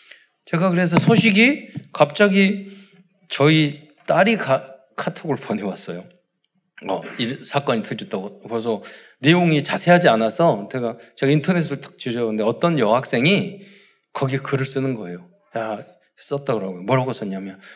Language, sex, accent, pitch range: Korean, male, native, 135-190 Hz